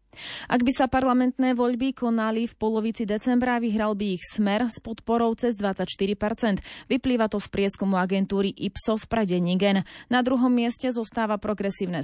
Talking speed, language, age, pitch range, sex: 145 wpm, Slovak, 20-39, 195-235 Hz, female